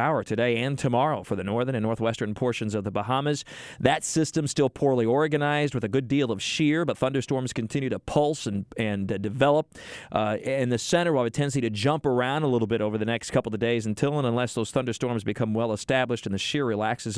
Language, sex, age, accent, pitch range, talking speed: English, male, 40-59, American, 115-145 Hz, 220 wpm